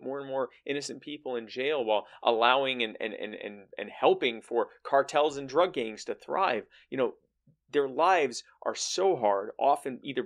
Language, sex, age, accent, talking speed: English, male, 30-49, American, 180 wpm